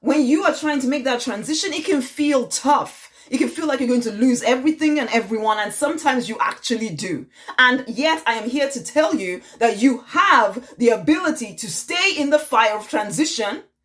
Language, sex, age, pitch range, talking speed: English, female, 20-39, 225-305 Hz, 210 wpm